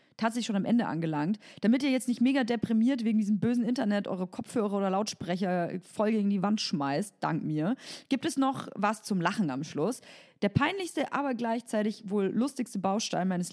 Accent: German